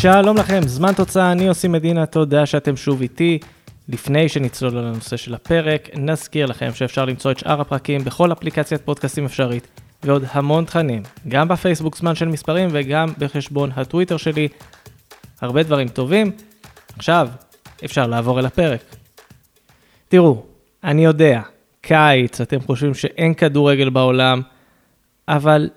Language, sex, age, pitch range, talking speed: Hebrew, male, 20-39, 135-175 Hz, 135 wpm